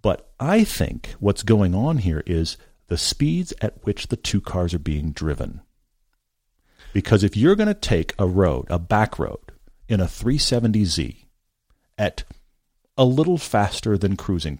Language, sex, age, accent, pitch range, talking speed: English, male, 40-59, American, 90-125 Hz, 155 wpm